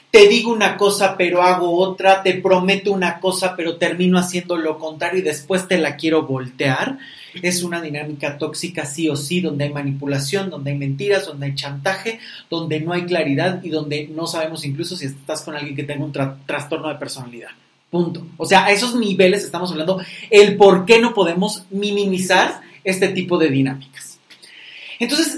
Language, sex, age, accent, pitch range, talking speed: Spanish, male, 40-59, Mexican, 155-215 Hz, 180 wpm